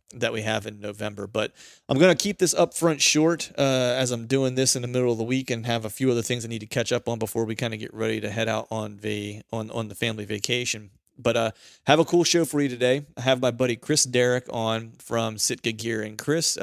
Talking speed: 270 wpm